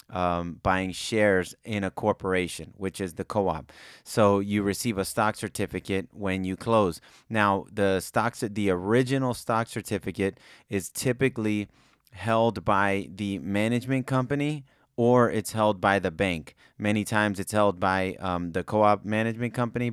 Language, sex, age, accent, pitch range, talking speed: English, male, 30-49, American, 95-110 Hz, 150 wpm